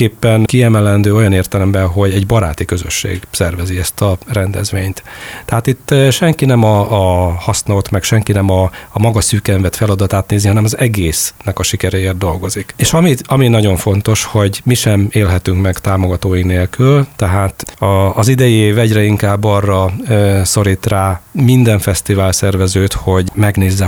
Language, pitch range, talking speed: Hungarian, 95-110 Hz, 155 wpm